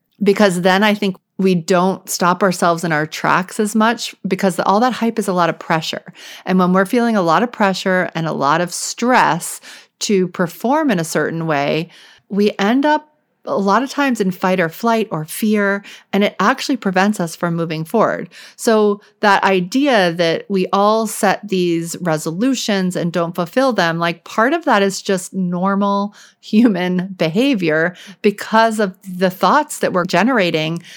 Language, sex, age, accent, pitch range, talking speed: English, female, 40-59, American, 165-205 Hz, 175 wpm